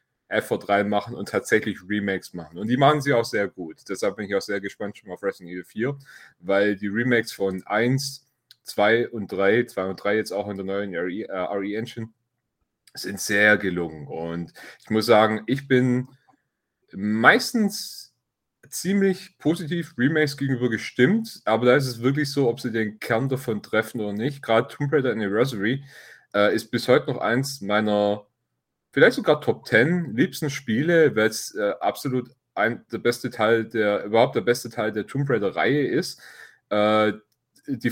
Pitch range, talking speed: 105-135 Hz, 165 wpm